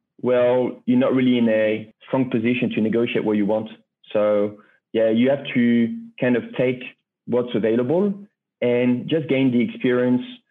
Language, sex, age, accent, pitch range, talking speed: English, male, 40-59, French, 120-140 Hz, 160 wpm